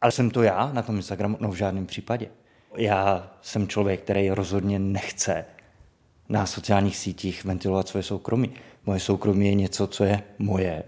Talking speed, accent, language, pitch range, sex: 165 wpm, native, Czech, 100-115 Hz, male